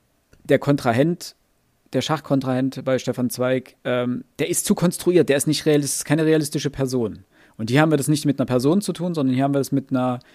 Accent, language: German, German